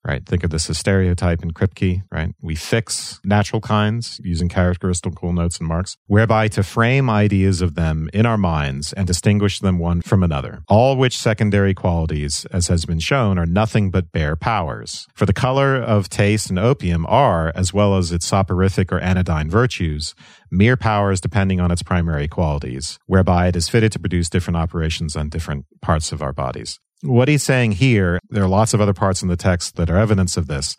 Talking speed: 195 wpm